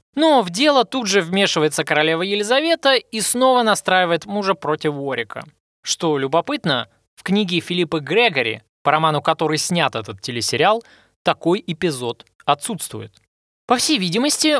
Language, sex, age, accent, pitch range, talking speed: Russian, male, 20-39, native, 130-205 Hz, 130 wpm